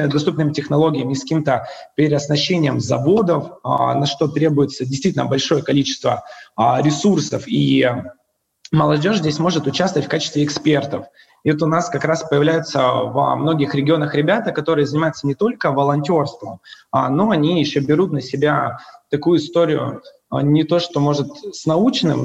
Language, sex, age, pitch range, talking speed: Russian, male, 20-39, 140-165 Hz, 140 wpm